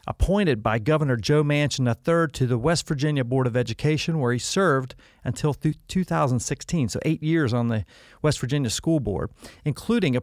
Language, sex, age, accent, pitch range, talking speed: English, male, 40-59, American, 120-160 Hz, 175 wpm